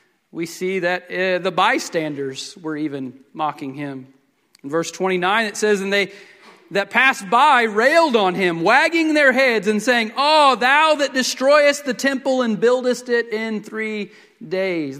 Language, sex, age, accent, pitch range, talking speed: English, male, 40-59, American, 195-320 Hz, 160 wpm